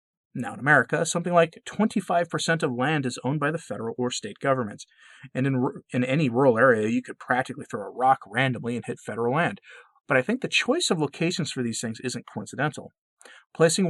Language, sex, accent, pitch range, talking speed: English, male, American, 115-155 Hz, 200 wpm